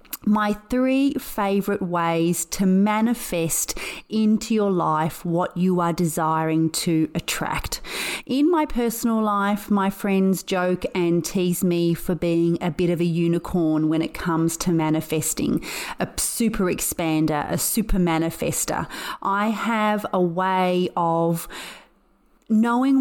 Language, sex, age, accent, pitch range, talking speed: English, female, 30-49, Australian, 170-210 Hz, 130 wpm